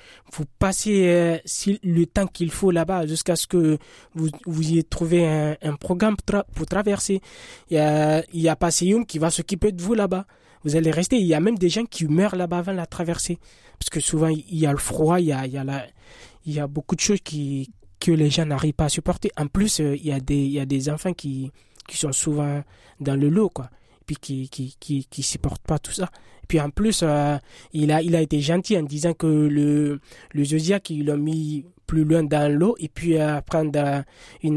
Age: 20-39